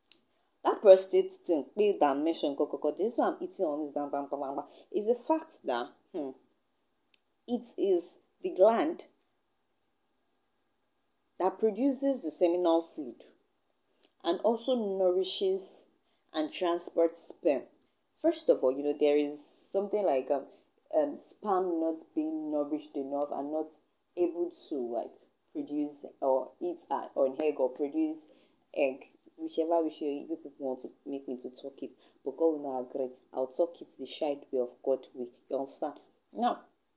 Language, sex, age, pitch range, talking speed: English, female, 20-39, 145-210 Hz, 135 wpm